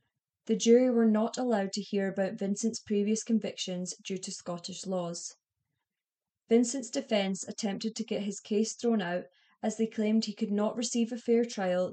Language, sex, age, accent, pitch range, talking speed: English, female, 20-39, British, 185-225 Hz, 170 wpm